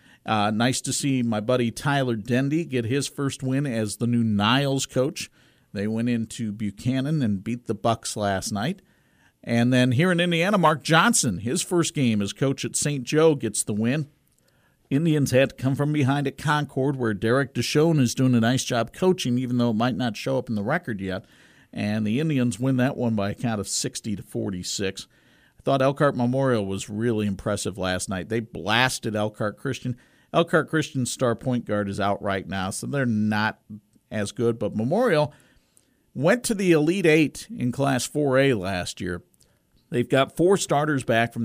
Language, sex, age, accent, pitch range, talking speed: English, male, 50-69, American, 110-145 Hz, 190 wpm